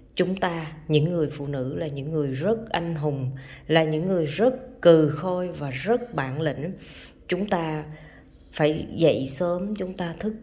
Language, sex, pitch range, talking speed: Vietnamese, female, 155-200 Hz, 175 wpm